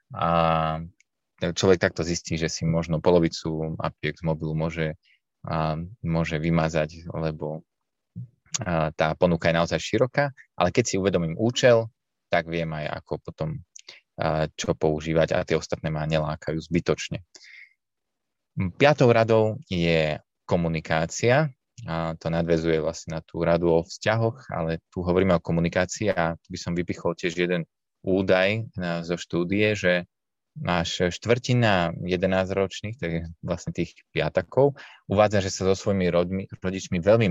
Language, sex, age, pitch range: Slovak, male, 20-39, 80-95 Hz